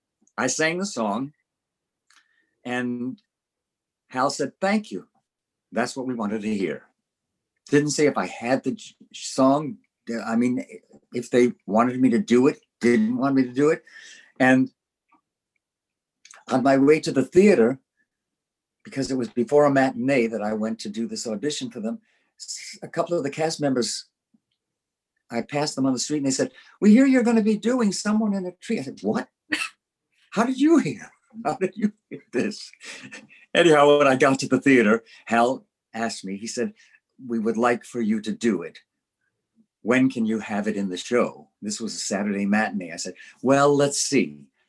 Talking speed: 180 wpm